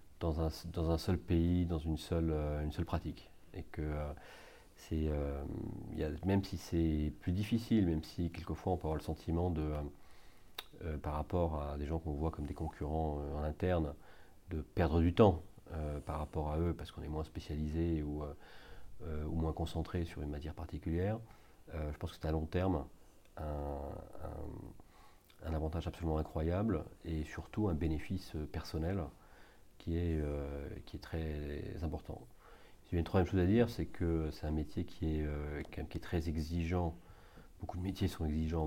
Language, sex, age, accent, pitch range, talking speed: French, male, 40-59, French, 75-90 Hz, 190 wpm